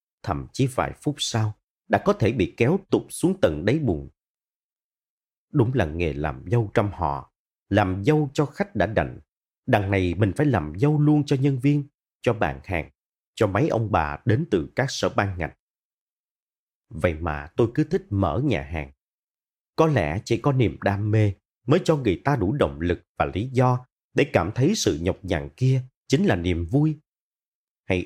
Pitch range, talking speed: 90-135 Hz, 190 wpm